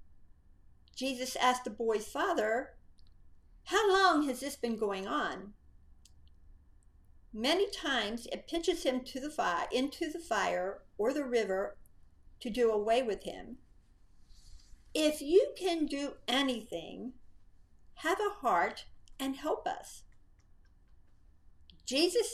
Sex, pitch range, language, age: female, 170-285 Hz, English, 50-69